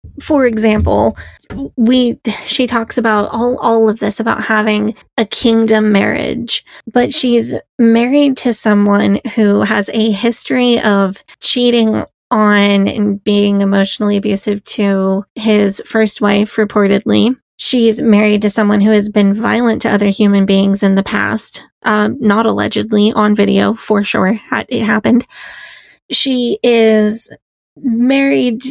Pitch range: 205-235 Hz